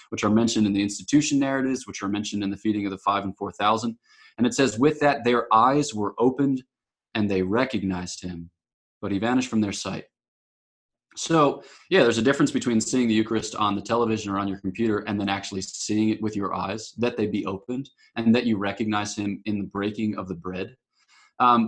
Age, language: 20-39, English